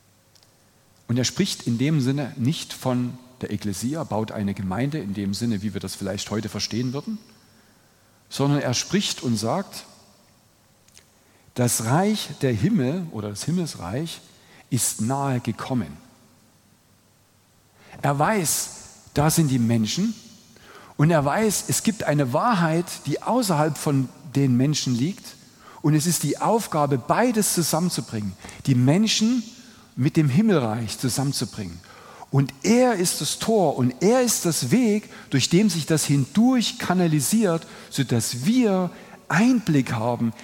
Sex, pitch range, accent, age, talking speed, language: male, 115-175 Hz, German, 50-69, 135 wpm, German